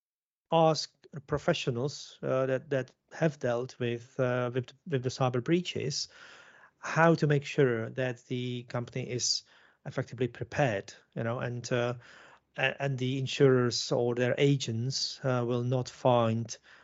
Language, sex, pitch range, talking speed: English, male, 120-145 Hz, 135 wpm